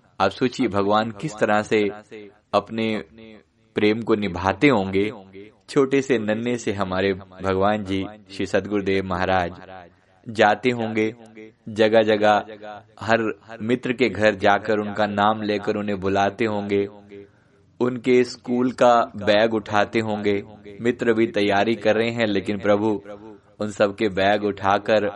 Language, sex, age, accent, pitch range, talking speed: Hindi, male, 20-39, native, 100-115 Hz, 135 wpm